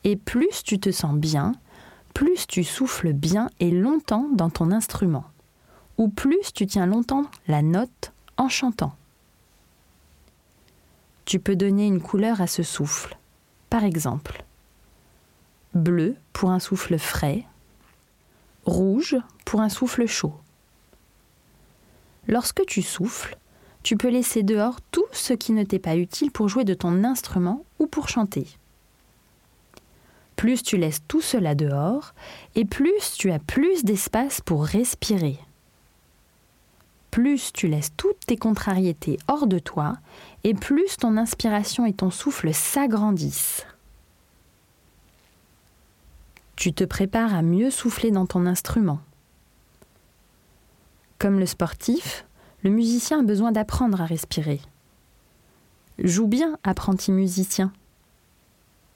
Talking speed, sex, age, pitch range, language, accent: 120 wpm, female, 20-39, 165-235 Hz, French, French